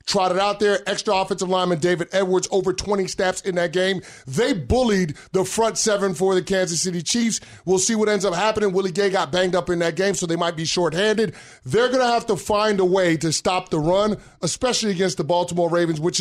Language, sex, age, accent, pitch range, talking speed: English, male, 30-49, American, 160-195 Hz, 225 wpm